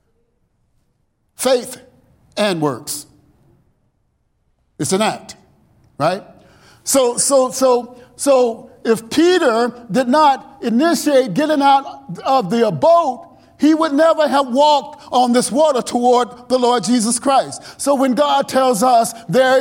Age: 50-69